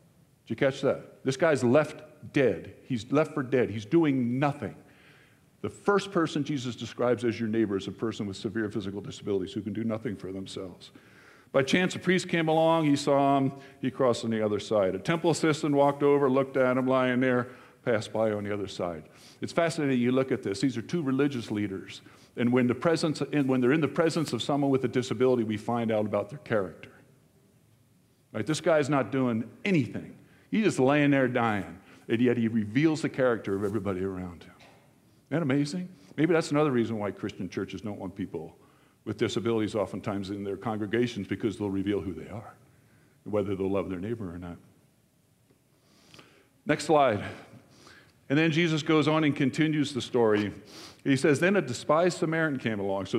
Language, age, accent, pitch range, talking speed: English, 50-69, American, 110-150 Hz, 190 wpm